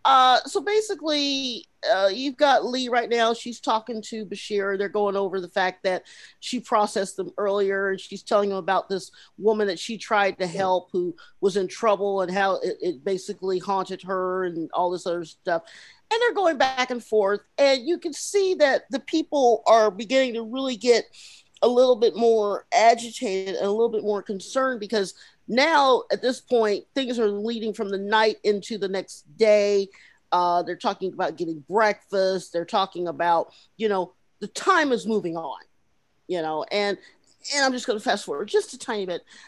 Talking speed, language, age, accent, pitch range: 190 wpm, English, 40-59, American, 195-280 Hz